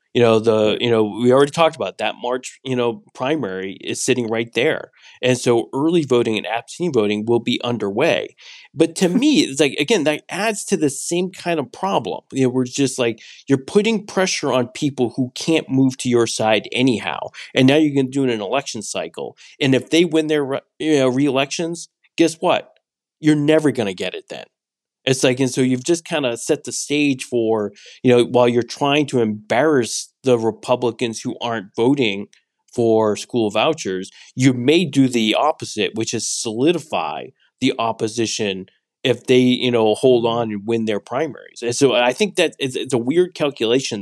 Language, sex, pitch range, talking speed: English, male, 110-145 Hz, 195 wpm